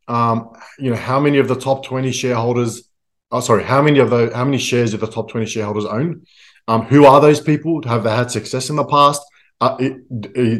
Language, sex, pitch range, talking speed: English, male, 115-140 Hz, 215 wpm